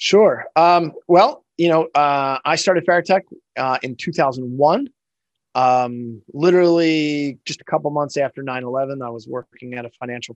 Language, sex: English, male